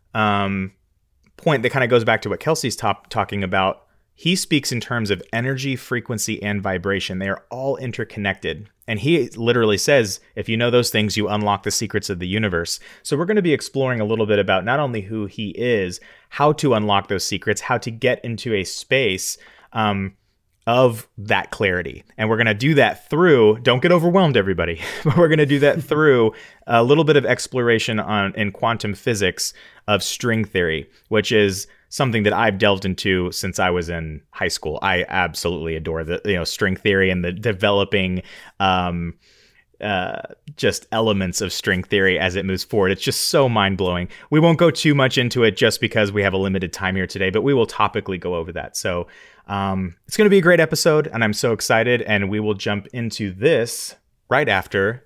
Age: 30-49